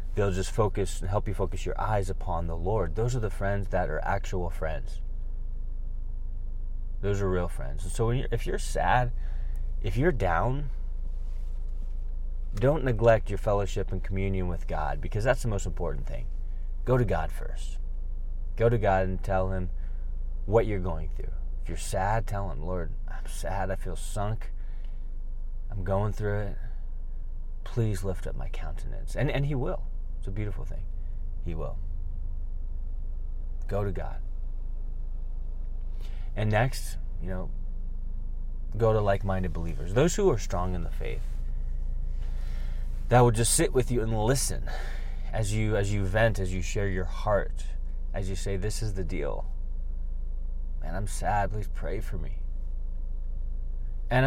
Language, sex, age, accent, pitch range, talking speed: English, male, 30-49, American, 85-105 Hz, 160 wpm